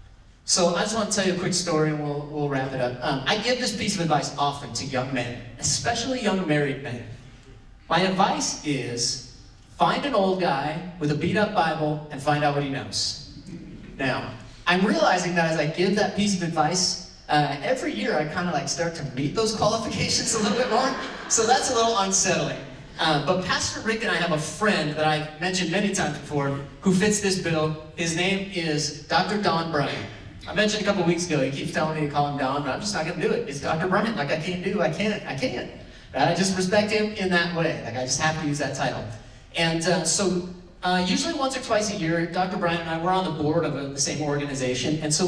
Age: 30-49